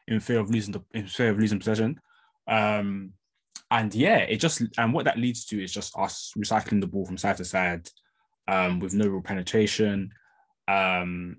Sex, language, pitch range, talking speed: male, English, 95-115 Hz, 185 wpm